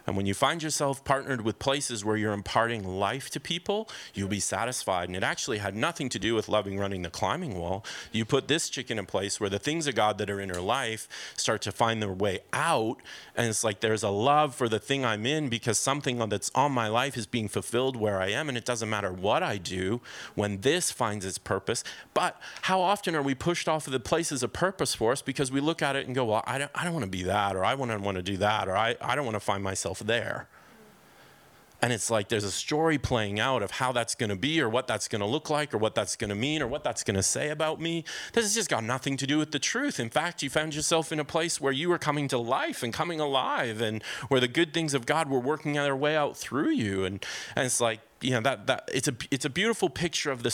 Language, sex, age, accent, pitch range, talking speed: English, male, 30-49, American, 105-150 Hz, 270 wpm